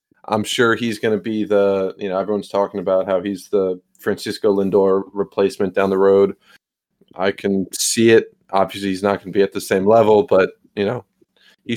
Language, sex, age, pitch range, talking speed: English, male, 20-39, 95-110 Hz, 200 wpm